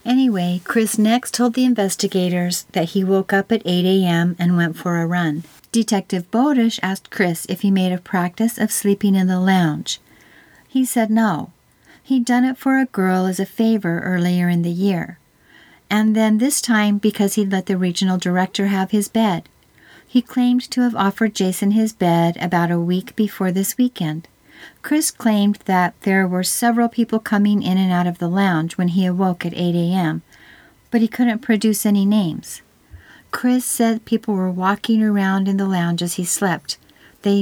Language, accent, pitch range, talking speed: English, American, 180-220 Hz, 185 wpm